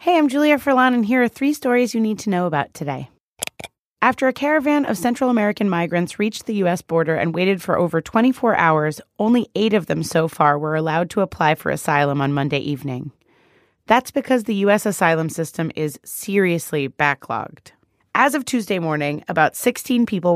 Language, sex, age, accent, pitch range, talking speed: English, female, 30-49, American, 165-230 Hz, 185 wpm